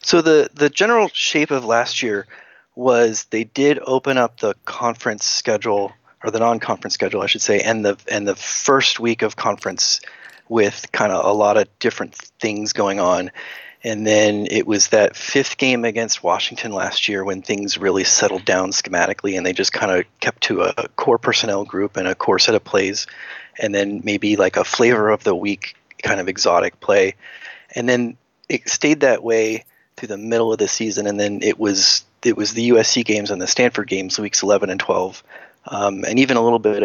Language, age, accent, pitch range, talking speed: English, 30-49, American, 105-120 Hz, 195 wpm